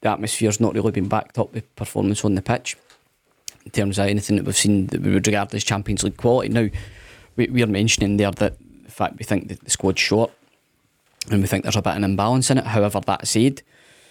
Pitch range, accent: 105-120 Hz, British